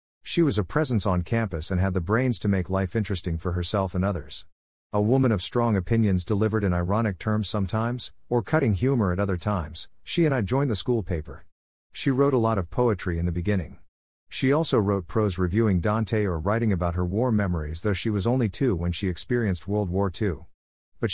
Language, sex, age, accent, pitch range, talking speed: English, male, 50-69, American, 90-115 Hz, 210 wpm